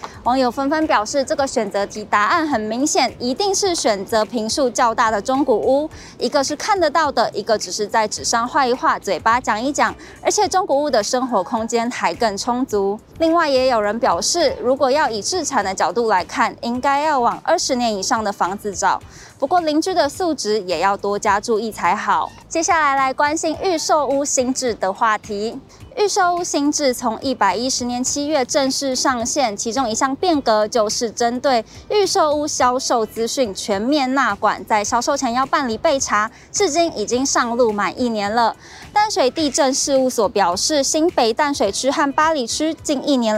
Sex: female